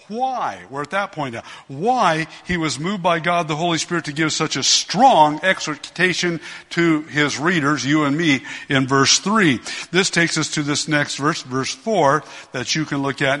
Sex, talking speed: male, 195 wpm